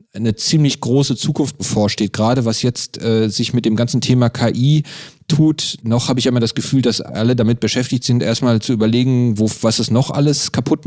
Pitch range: 110-130 Hz